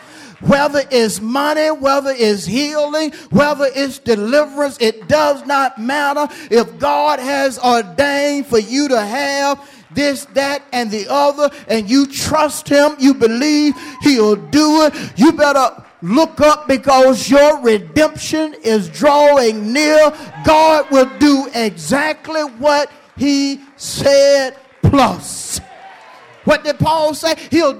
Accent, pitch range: American, 215-290 Hz